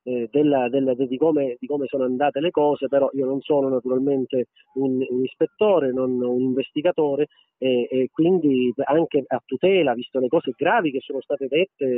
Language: Italian